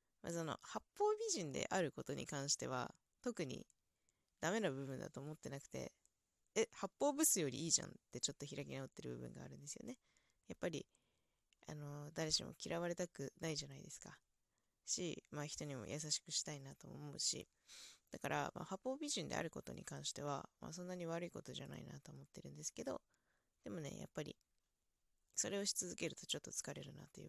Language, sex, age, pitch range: Japanese, female, 20-39, 140-225 Hz